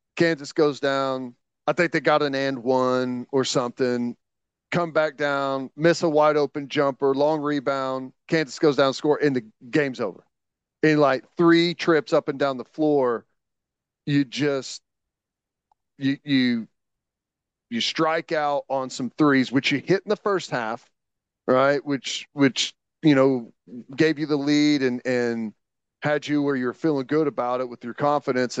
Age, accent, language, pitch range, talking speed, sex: 40-59, American, English, 130-150 Hz, 165 wpm, male